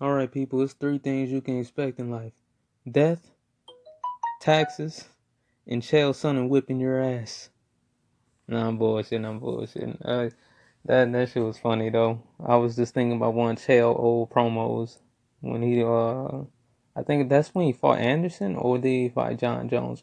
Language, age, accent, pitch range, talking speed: English, 20-39, American, 120-130 Hz, 170 wpm